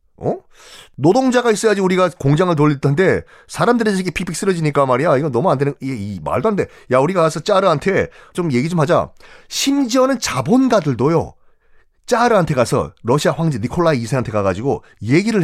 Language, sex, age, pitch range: Korean, male, 30-49, 135-215 Hz